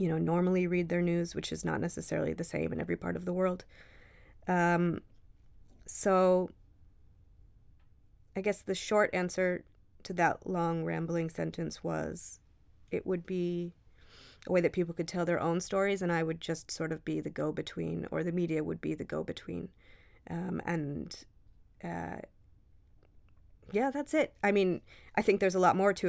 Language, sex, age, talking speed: English, female, 30-49, 170 wpm